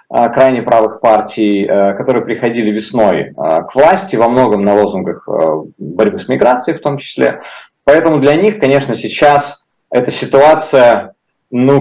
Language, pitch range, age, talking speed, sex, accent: Russian, 105-130 Hz, 20-39, 130 wpm, male, native